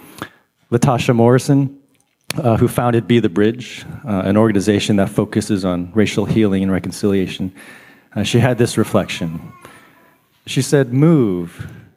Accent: American